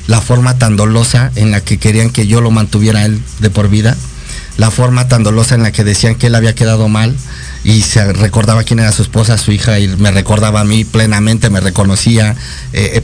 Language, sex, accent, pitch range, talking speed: Spanish, male, Mexican, 105-130 Hz, 220 wpm